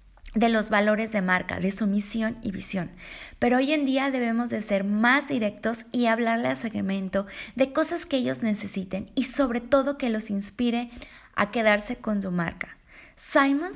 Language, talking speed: Spanish, 175 wpm